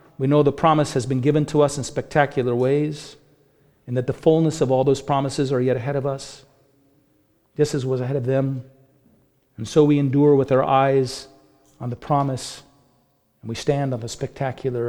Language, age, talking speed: English, 40-59, 190 wpm